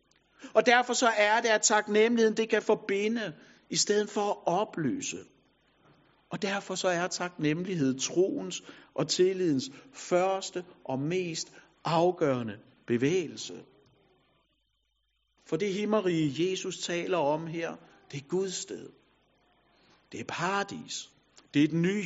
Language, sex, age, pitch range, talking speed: Danish, male, 60-79, 140-205 Hz, 125 wpm